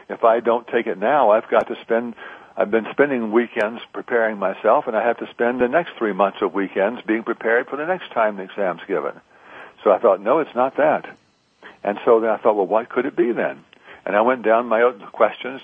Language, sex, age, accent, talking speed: English, male, 60-79, American, 235 wpm